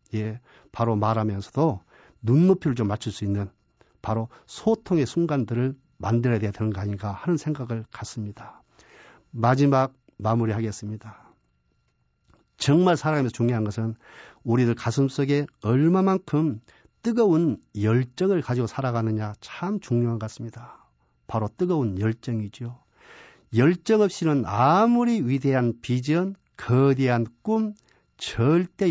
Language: Korean